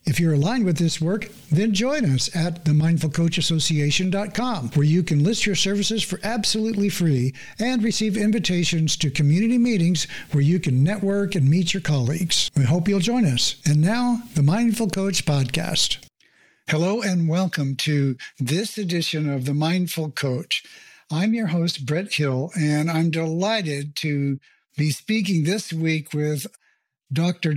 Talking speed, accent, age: 155 wpm, American, 60-79